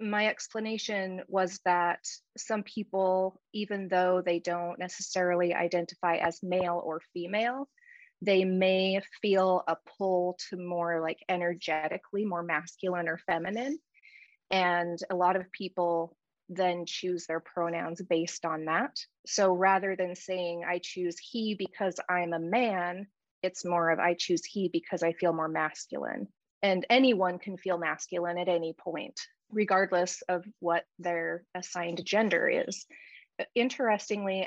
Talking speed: 140 wpm